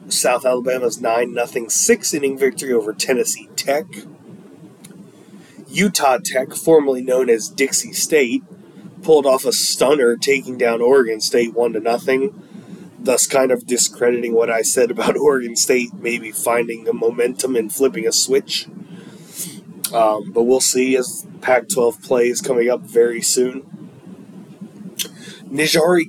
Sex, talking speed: male, 125 wpm